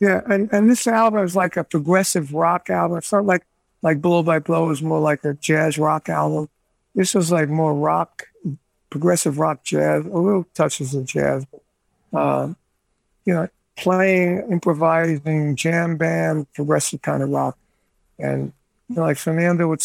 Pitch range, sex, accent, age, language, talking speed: 145-180 Hz, male, American, 60-79, English, 165 wpm